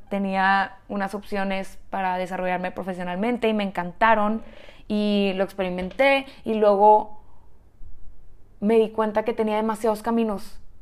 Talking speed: 115 wpm